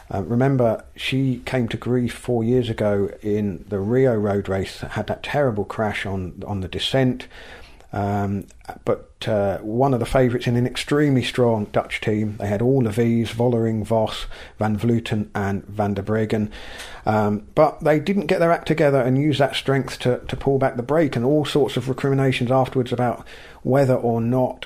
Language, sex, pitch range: English, male, 110-135 Hz